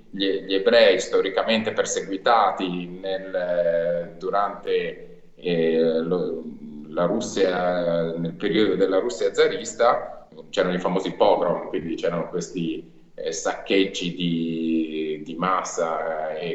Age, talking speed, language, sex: 30-49, 110 wpm, Italian, male